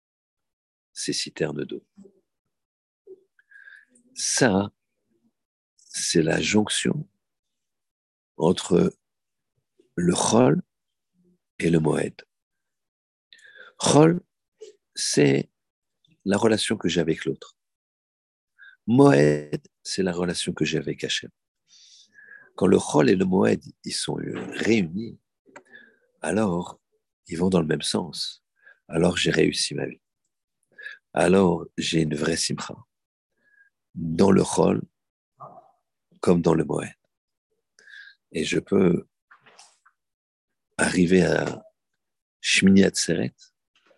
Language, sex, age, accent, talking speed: French, male, 50-69, French, 95 wpm